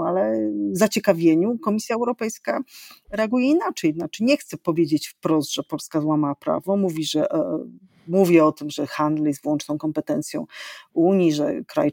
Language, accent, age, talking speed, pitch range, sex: Polish, native, 40-59, 145 wpm, 155-190 Hz, female